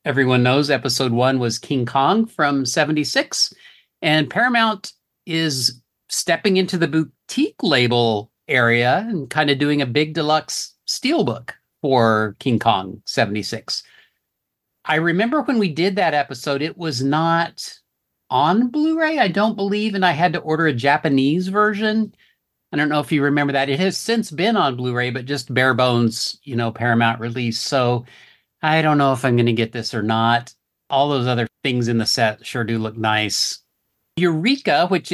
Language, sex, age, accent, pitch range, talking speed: English, male, 50-69, American, 120-160 Hz, 170 wpm